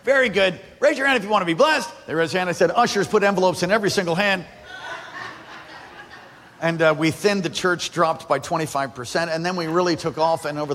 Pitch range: 145-185 Hz